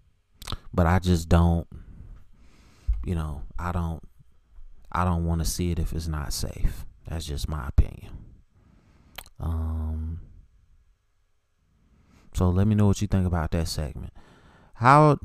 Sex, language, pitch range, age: male, English, 85-105 Hz, 30-49